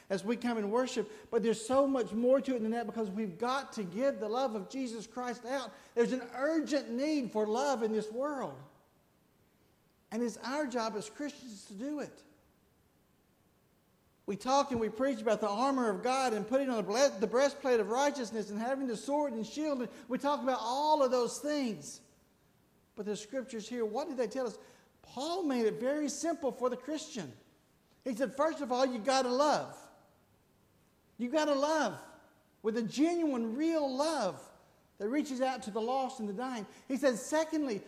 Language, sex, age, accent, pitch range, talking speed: English, male, 60-79, American, 205-270 Hz, 190 wpm